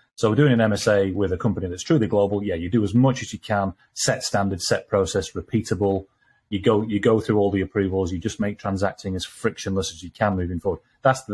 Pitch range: 95-110 Hz